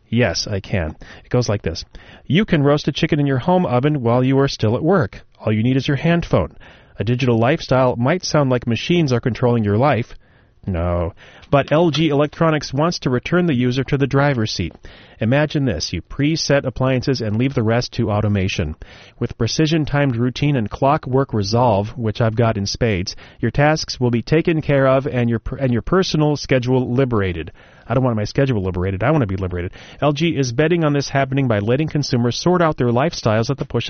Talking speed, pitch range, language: 205 wpm, 105-145 Hz, English